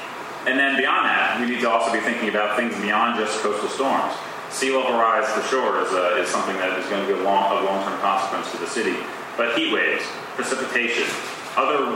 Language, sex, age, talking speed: English, male, 30-49, 210 wpm